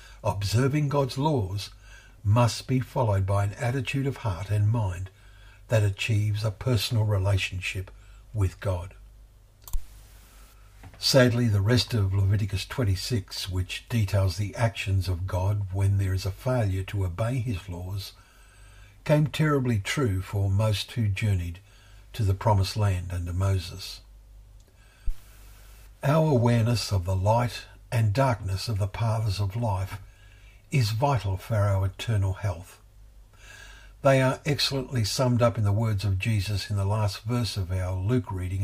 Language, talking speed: English, 140 wpm